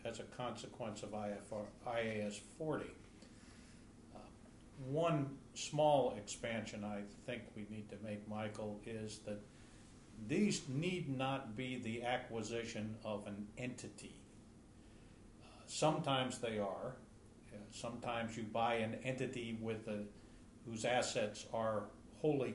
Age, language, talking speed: 50-69, English, 115 wpm